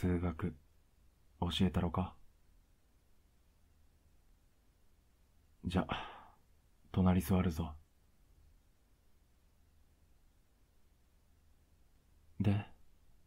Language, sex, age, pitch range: Japanese, male, 40-59, 75-85 Hz